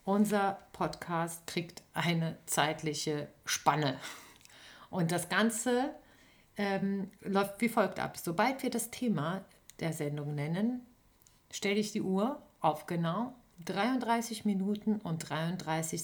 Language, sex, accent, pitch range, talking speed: German, female, German, 165-215 Hz, 115 wpm